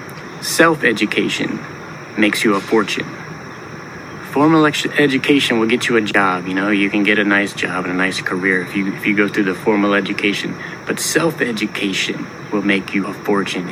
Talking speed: 170 wpm